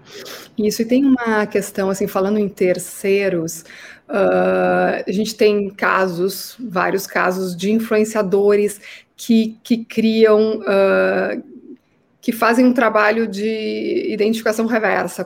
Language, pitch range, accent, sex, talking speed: Portuguese, 205-240 Hz, Brazilian, female, 115 wpm